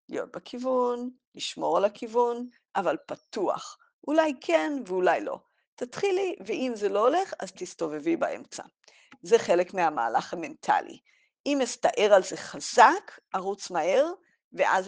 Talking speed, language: 125 wpm, Hebrew